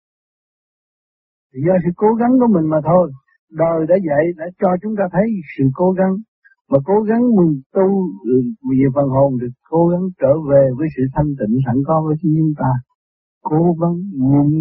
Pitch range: 140-205 Hz